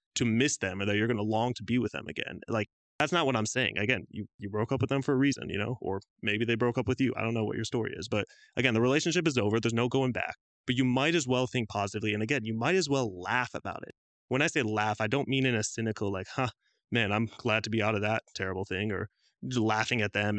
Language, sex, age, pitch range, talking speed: English, male, 20-39, 105-125 Hz, 290 wpm